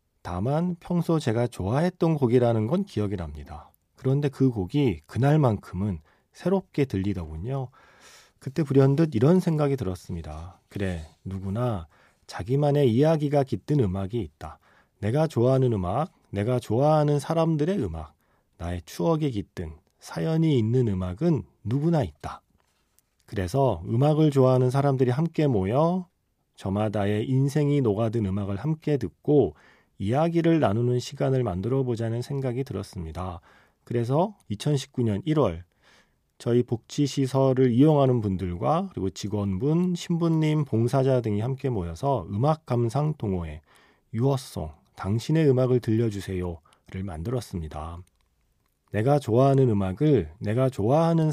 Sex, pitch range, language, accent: male, 95-145 Hz, Korean, native